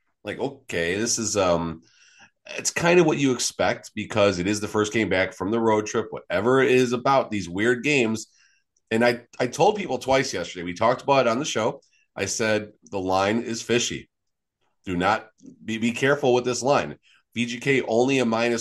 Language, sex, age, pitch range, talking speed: English, male, 30-49, 105-125 Hz, 195 wpm